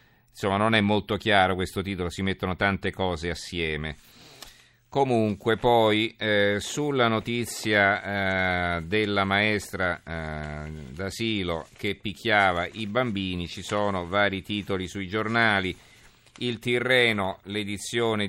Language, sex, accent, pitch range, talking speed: Italian, male, native, 95-115 Hz, 115 wpm